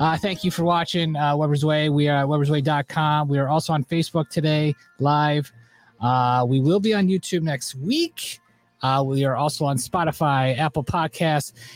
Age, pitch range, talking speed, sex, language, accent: 30-49, 135-185 Hz, 180 wpm, male, English, American